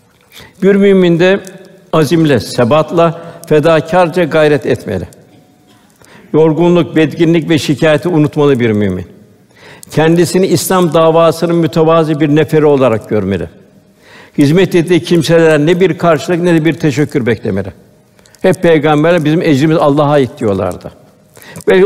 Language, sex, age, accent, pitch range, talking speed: Turkish, male, 60-79, native, 130-165 Hz, 115 wpm